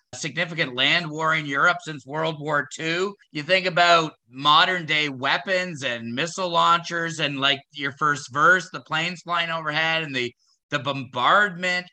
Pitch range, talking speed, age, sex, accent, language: 145-180 Hz, 155 wpm, 30-49, male, American, English